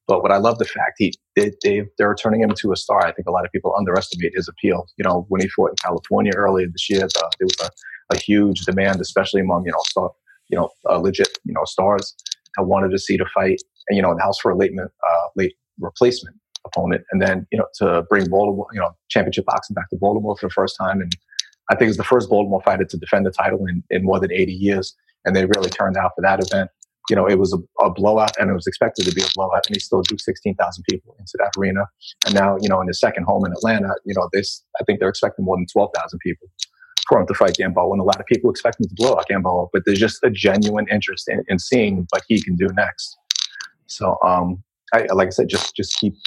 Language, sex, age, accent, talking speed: English, male, 30-49, American, 260 wpm